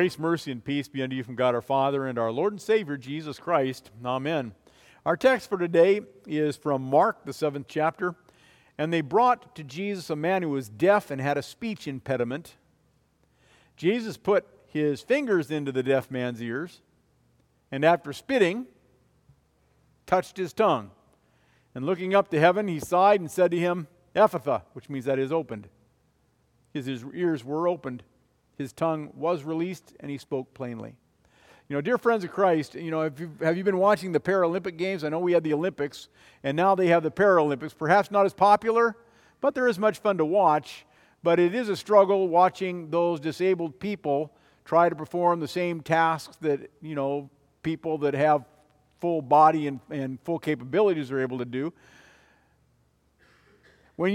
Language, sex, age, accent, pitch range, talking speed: English, male, 50-69, American, 135-185 Hz, 175 wpm